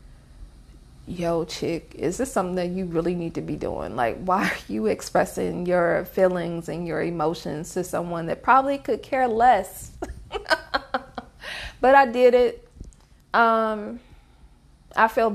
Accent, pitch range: American, 165-215 Hz